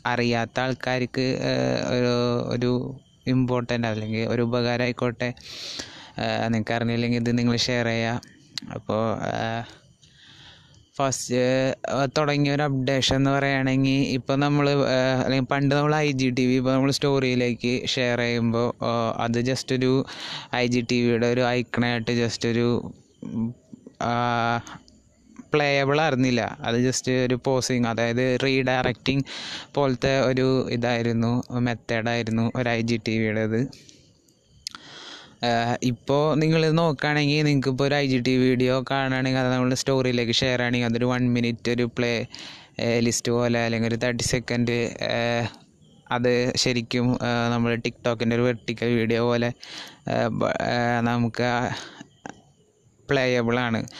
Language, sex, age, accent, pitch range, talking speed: Malayalam, male, 20-39, native, 120-130 Hz, 110 wpm